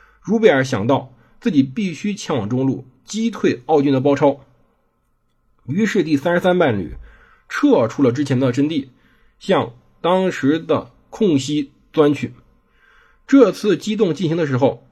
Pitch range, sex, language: 135-195 Hz, male, Chinese